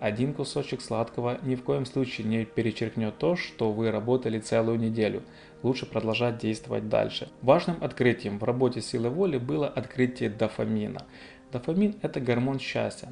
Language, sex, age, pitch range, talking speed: Russian, male, 20-39, 110-130 Hz, 145 wpm